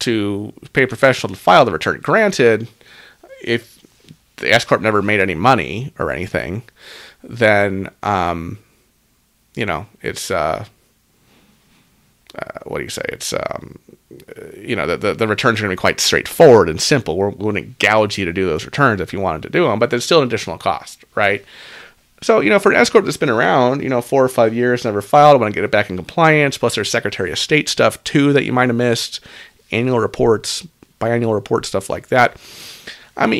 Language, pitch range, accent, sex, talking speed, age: English, 105-135 Hz, American, male, 200 wpm, 30-49